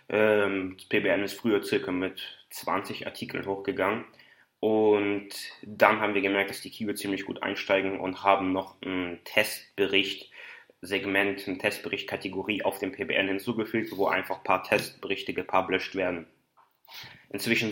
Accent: German